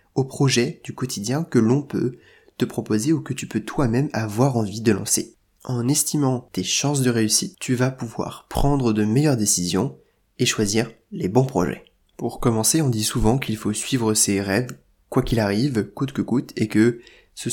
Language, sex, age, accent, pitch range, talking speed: French, male, 20-39, French, 110-130 Hz, 190 wpm